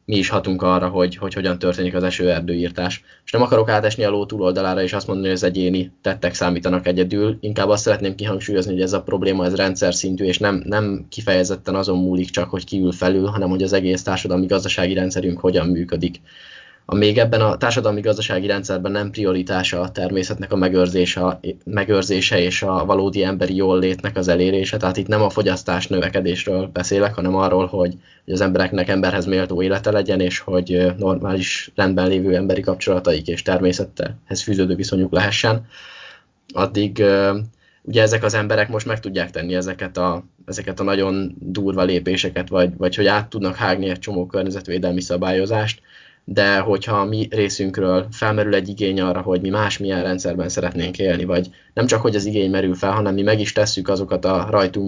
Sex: male